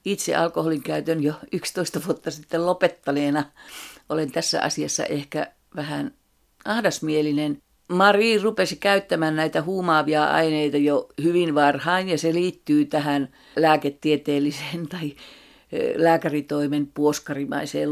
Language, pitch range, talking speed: Finnish, 150-180 Hz, 105 wpm